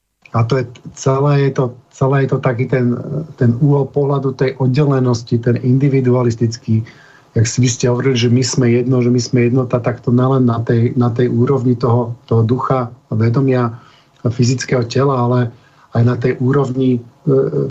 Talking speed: 175 wpm